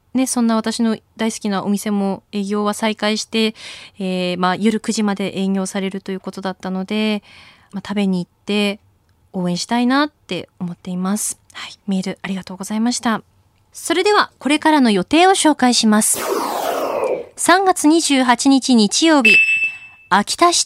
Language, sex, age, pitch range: Japanese, female, 20-39, 200-290 Hz